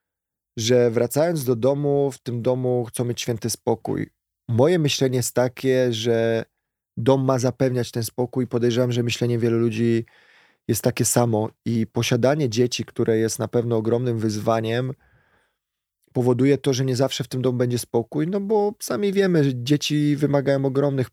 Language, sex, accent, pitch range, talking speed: Polish, male, native, 115-130 Hz, 160 wpm